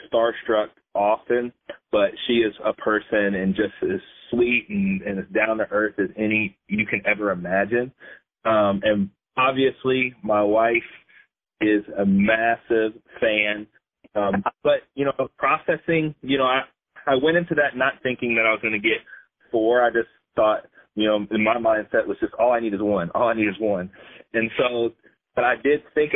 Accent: American